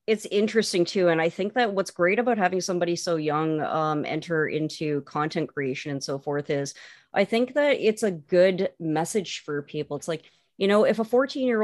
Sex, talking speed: female, 205 wpm